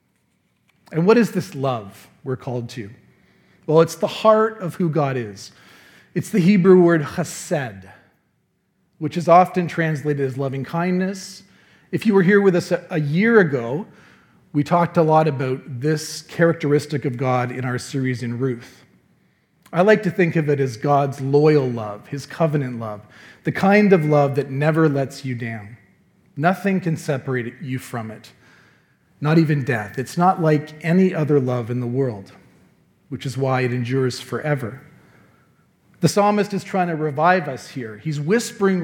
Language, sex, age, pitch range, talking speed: English, male, 40-59, 130-175 Hz, 165 wpm